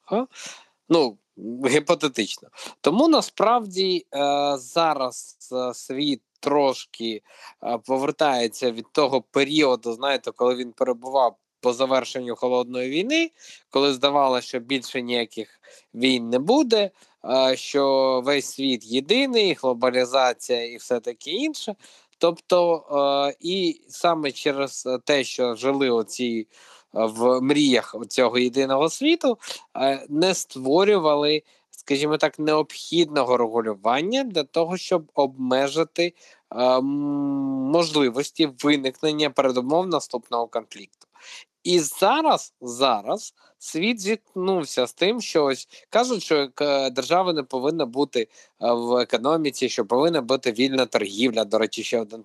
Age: 20-39